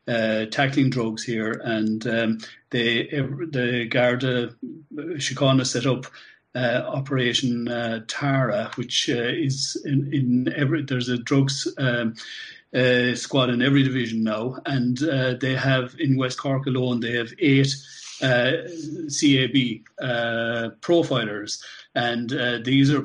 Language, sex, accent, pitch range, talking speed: English, male, Irish, 115-130 Hz, 135 wpm